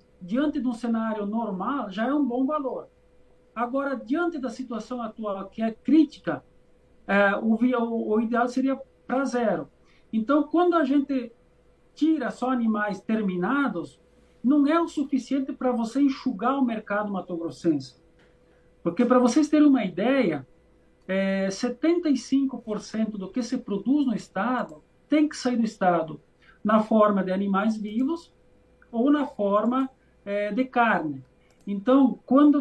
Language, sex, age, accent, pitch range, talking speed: Portuguese, male, 50-69, Brazilian, 210-270 Hz, 140 wpm